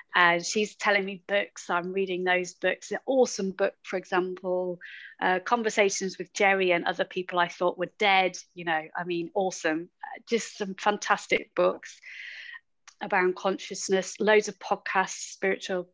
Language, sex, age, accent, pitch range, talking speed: English, female, 30-49, British, 175-200 Hz, 160 wpm